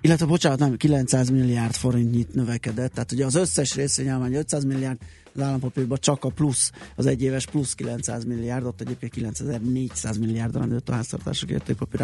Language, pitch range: Hungarian, 115-135 Hz